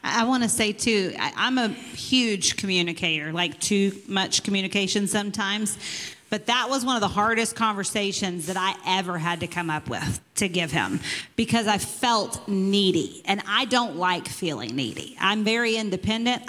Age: 40-59